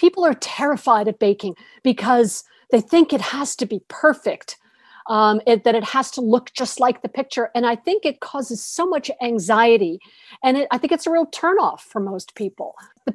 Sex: female